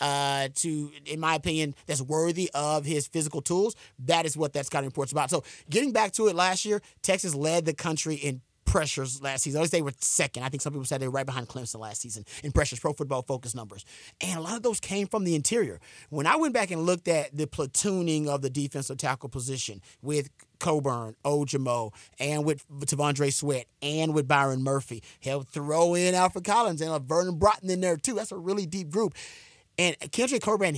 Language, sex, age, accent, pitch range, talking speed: English, male, 30-49, American, 140-180 Hz, 215 wpm